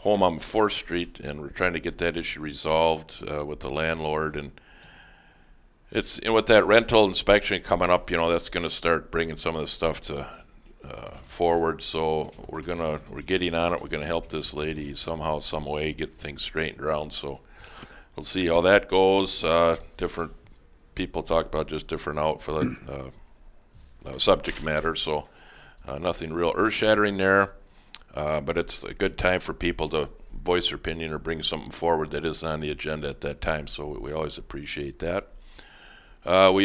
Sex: male